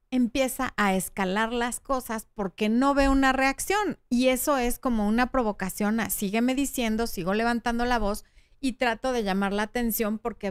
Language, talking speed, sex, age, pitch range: Spanish, 170 wpm, female, 40-59, 205-270 Hz